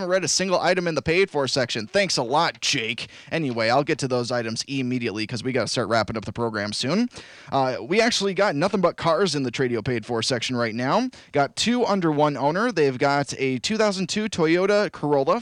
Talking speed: 220 wpm